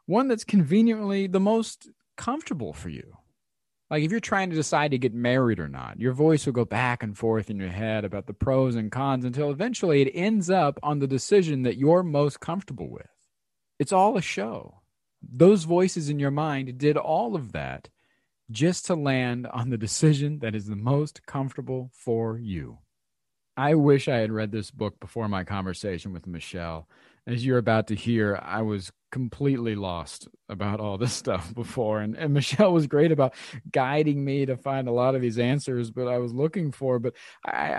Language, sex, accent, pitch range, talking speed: English, male, American, 110-155 Hz, 190 wpm